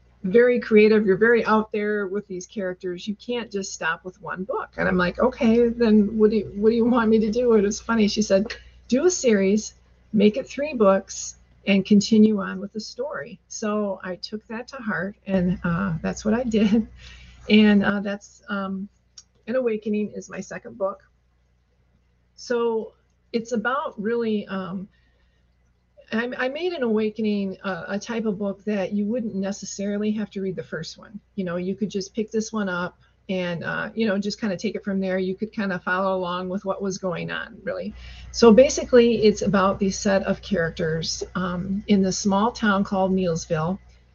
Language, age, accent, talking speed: English, 40-59, American, 195 wpm